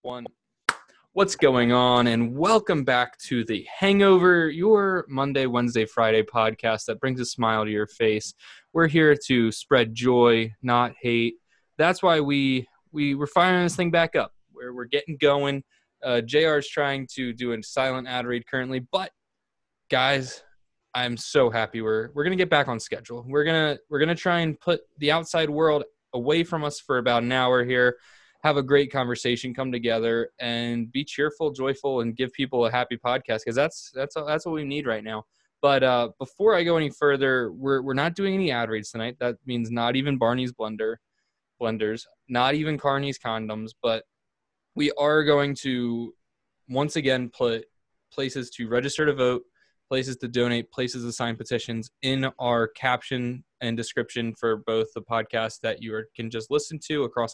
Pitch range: 115-145 Hz